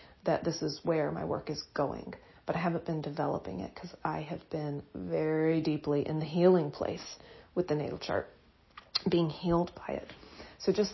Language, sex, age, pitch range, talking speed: English, female, 40-59, 150-180 Hz, 185 wpm